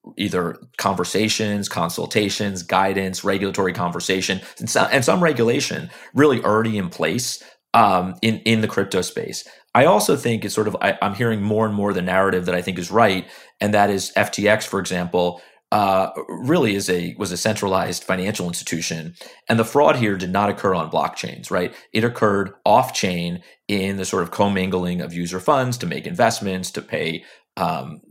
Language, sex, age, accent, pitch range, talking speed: English, male, 30-49, American, 90-105 Hz, 175 wpm